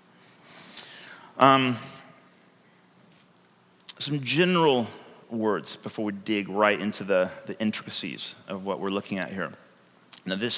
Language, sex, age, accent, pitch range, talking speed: English, male, 30-49, American, 105-135 Hz, 110 wpm